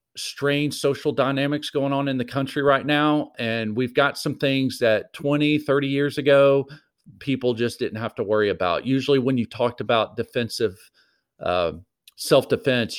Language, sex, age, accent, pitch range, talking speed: English, male, 40-59, American, 115-140 Hz, 160 wpm